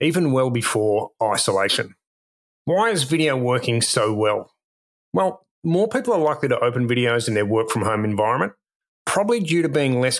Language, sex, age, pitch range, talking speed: English, male, 30-49, 115-150 Hz, 170 wpm